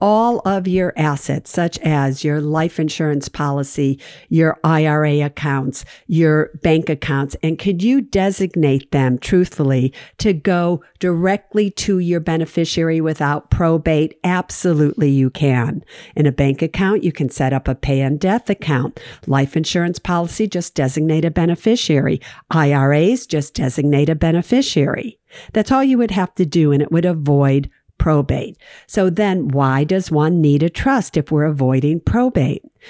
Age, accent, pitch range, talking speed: 50-69, American, 155-210 Hz, 150 wpm